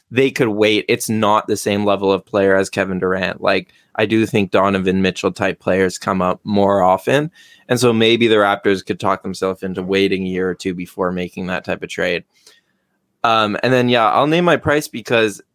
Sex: male